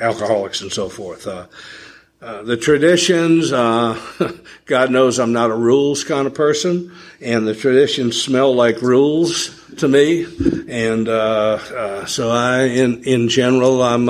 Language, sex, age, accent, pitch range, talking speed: English, male, 60-79, American, 115-140 Hz, 150 wpm